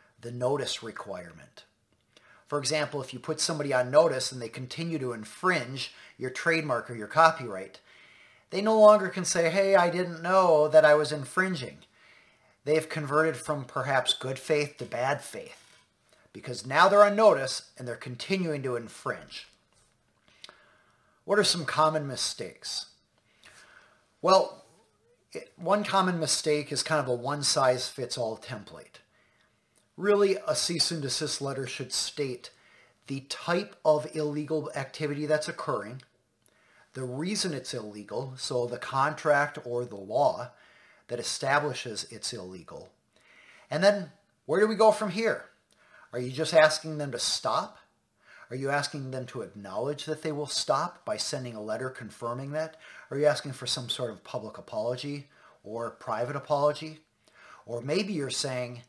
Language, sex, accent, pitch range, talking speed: English, male, American, 125-160 Hz, 150 wpm